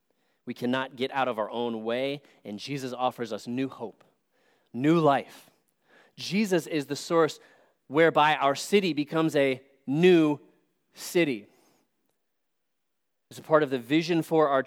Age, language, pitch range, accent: 30-49, English, 130-170 Hz, American